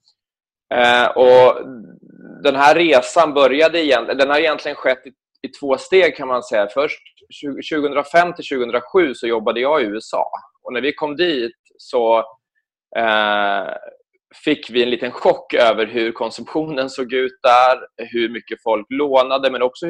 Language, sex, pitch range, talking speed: English, male, 120-170 Hz, 135 wpm